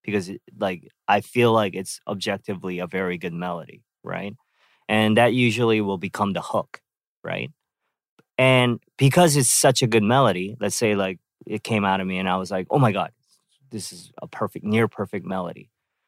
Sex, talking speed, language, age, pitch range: male, 185 wpm, English, 20-39, 95-120 Hz